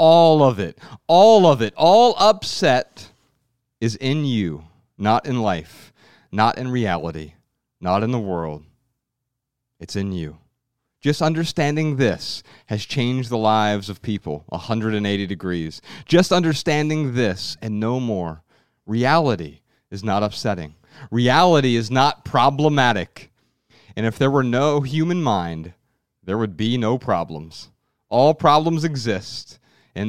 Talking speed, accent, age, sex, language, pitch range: 130 wpm, American, 40-59, male, English, 105-135 Hz